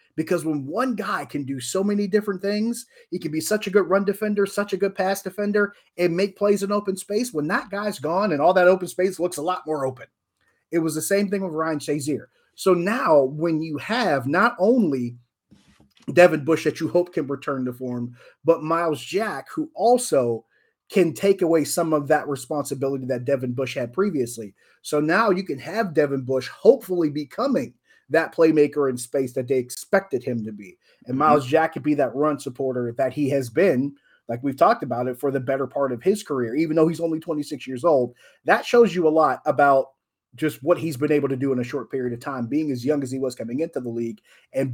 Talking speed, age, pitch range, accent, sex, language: 220 wpm, 30-49, 135-185 Hz, American, male, English